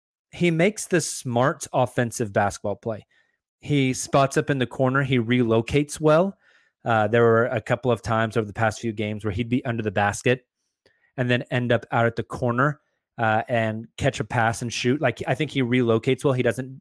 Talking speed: 205 wpm